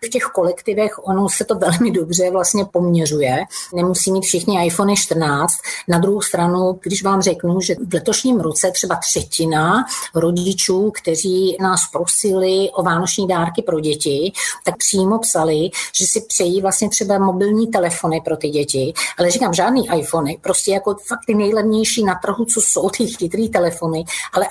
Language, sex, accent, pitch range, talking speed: Czech, female, native, 175-200 Hz, 160 wpm